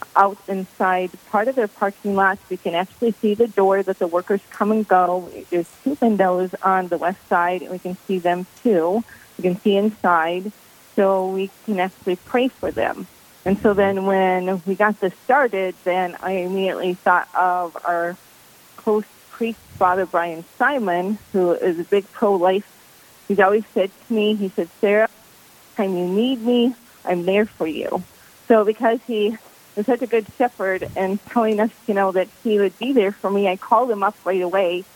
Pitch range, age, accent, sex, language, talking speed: 185-220 Hz, 30-49, American, female, English, 185 wpm